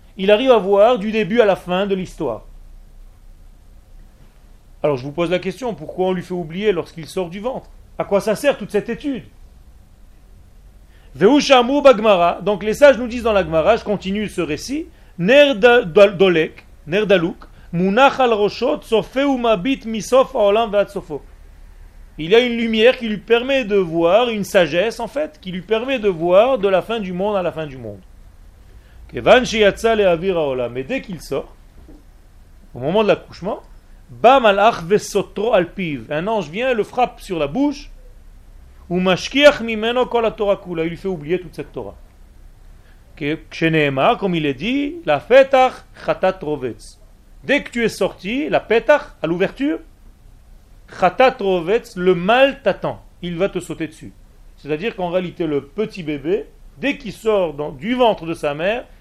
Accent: French